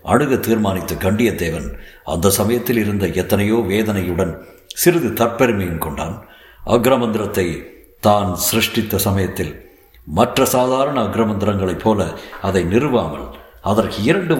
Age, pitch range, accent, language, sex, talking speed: 60-79, 90-115 Hz, native, Tamil, male, 95 wpm